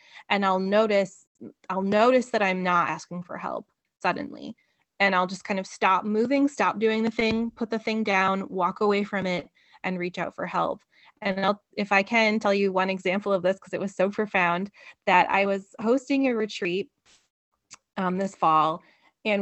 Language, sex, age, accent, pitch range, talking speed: English, female, 20-39, American, 180-215 Hz, 190 wpm